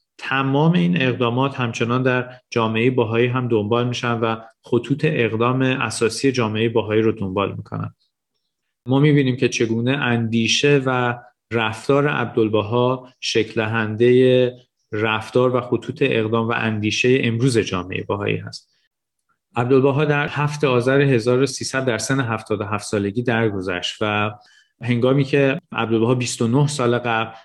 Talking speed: 120 wpm